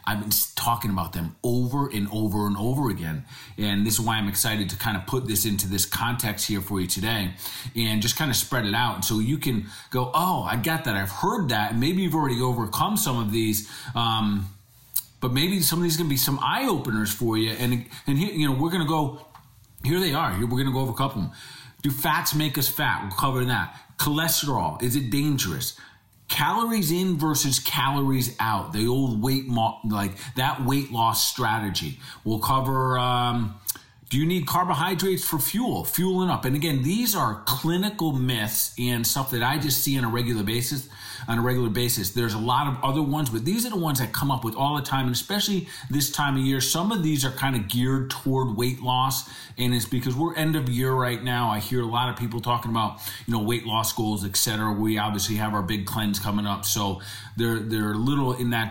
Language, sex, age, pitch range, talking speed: English, male, 40-59, 110-145 Hz, 225 wpm